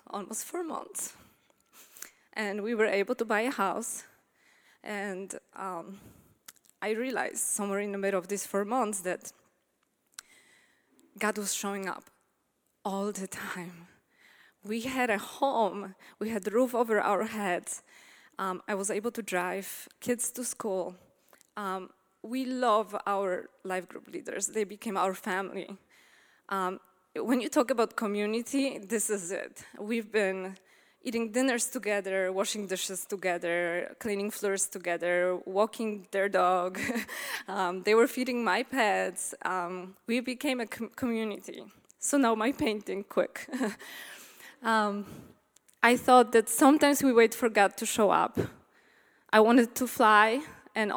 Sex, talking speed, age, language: female, 140 wpm, 20-39, English